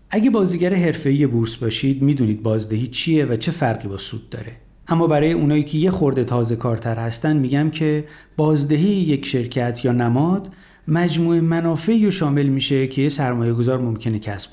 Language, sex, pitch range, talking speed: Persian, male, 125-170 Hz, 170 wpm